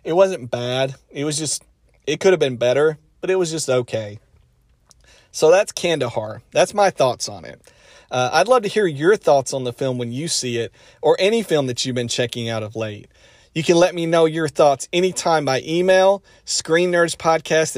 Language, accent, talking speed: English, American, 200 wpm